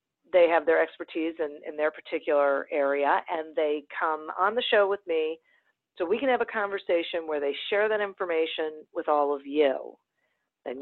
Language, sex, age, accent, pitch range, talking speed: English, female, 40-59, American, 160-240 Hz, 185 wpm